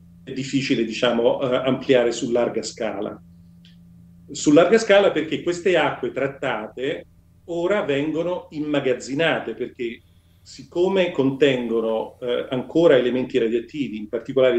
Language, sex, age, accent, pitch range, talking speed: Italian, male, 40-59, native, 110-140 Hz, 105 wpm